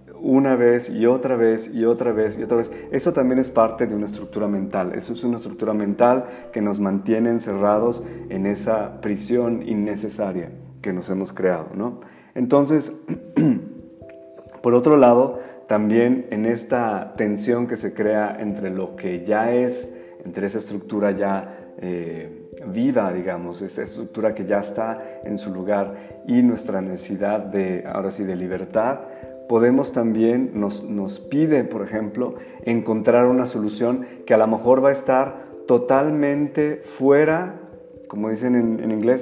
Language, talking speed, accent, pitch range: Spanish, 155 wpm, Mexican, 100-125 Hz